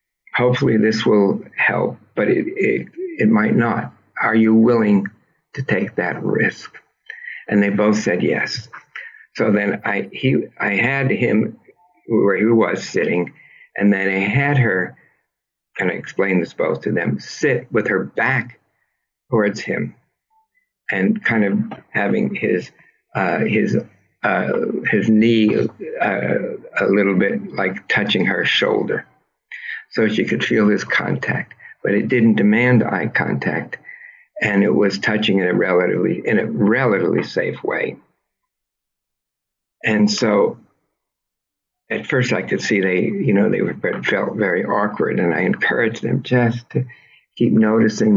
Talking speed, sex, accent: 145 wpm, male, American